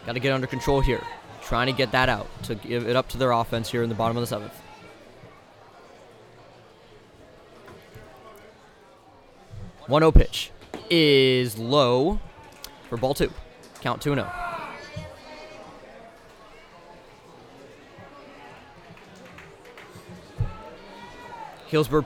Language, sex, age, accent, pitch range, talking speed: English, male, 20-39, American, 120-145 Hz, 100 wpm